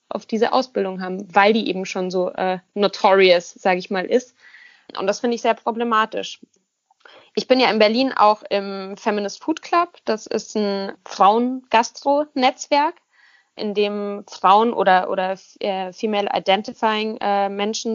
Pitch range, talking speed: 190-225 Hz, 140 wpm